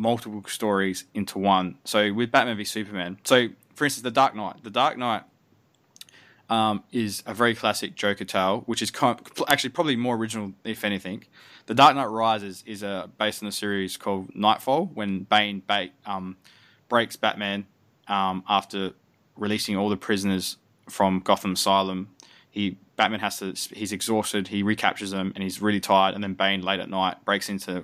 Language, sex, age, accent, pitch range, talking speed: English, male, 20-39, Australian, 95-115 Hz, 170 wpm